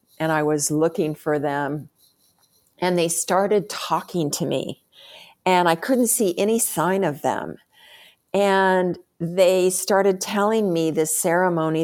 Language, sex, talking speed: English, female, 135 wpm